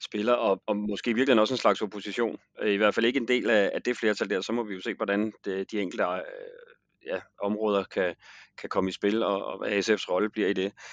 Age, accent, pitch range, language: 30-49, native, 95-120 Hz, Danish